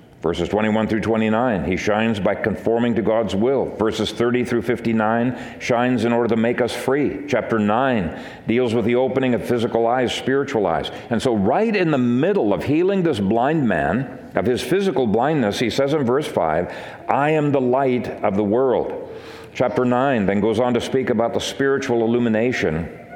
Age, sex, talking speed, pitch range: 50-69, male, 185 wpm, 115-170 Hz